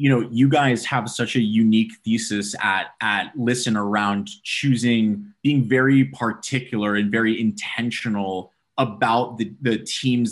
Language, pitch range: English, 100-115 Hz